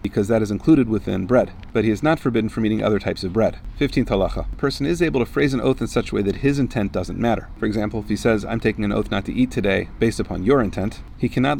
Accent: American